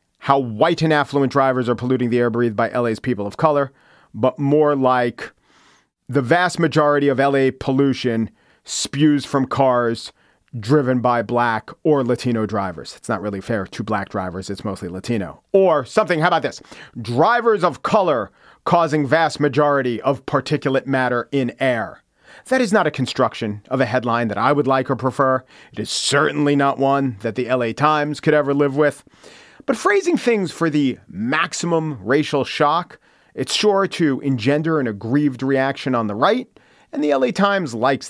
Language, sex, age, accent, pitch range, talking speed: English, male, 40-59, American, 120-170 Hz, 170 wpm